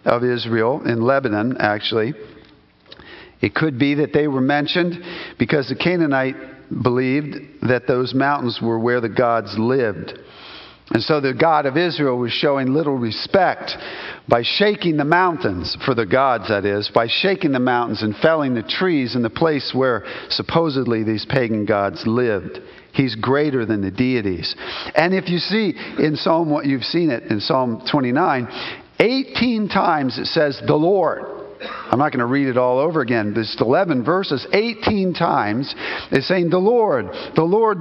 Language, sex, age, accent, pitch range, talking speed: English, male, 50-69, American, 115-170 Hz, 165 wpm